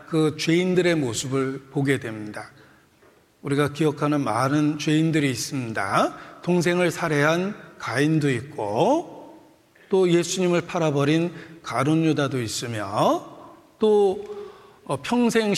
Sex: male